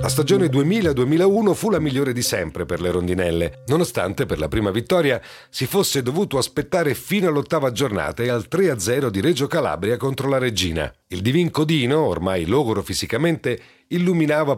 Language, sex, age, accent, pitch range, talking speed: Italian, male, 40-59, native, 105-160 Hz, 160 wpm